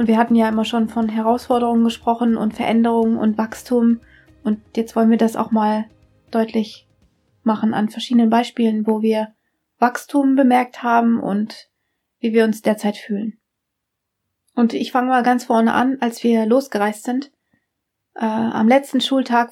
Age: 30-49